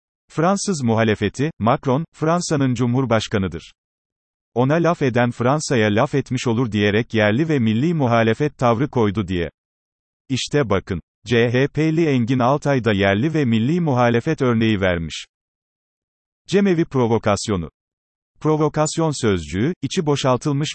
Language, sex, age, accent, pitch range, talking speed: Turkish, male, 40-59, native, 110-140 Hz, 110 wpm